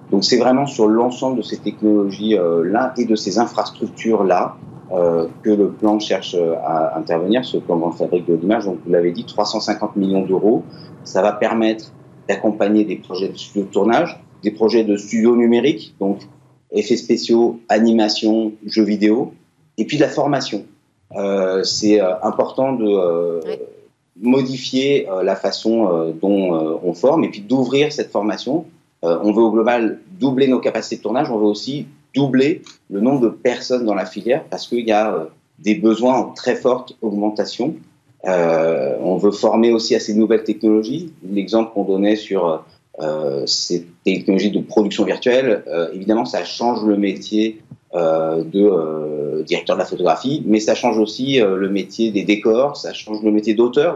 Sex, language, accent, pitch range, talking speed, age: male, French, French, 100-120 Hz, 165 wpm, 40-59